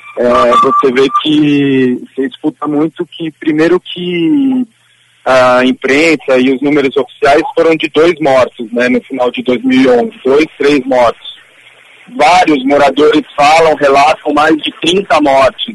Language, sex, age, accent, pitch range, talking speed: Portuguese, male, 40-59, Brazilian, 135-180 Hz, 135 wpm